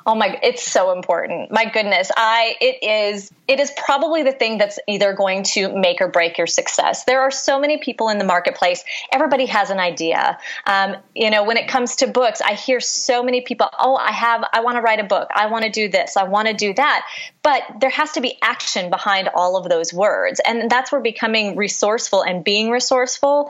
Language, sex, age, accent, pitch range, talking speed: English, female, 30-49, American, 195-255 Hz, 220 wpm